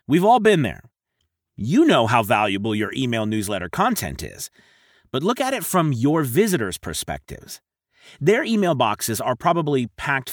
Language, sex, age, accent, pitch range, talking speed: English, male, 30-49, American, 120-170 Hz, 155 wpm